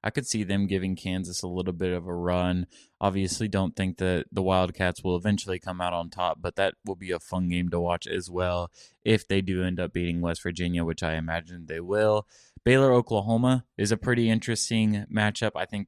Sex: male